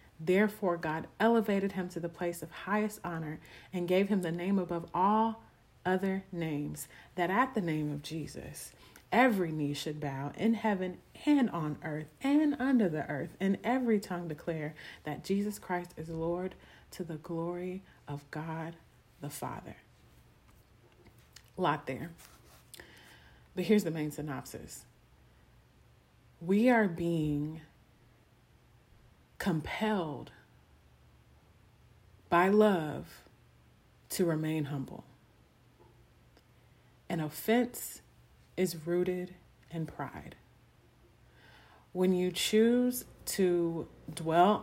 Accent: American